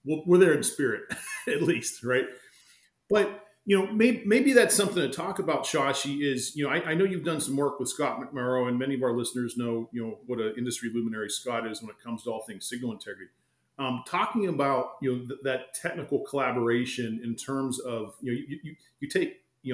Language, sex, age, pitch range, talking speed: English, male, 40-59, 120-160 Hz, 220 wpm